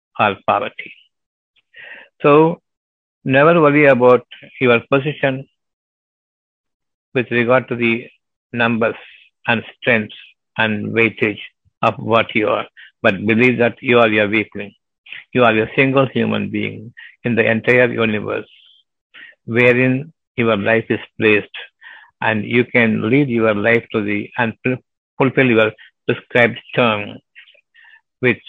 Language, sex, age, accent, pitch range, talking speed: Tamil, male, 60-79, native, 115-130 Hz, 120 wpm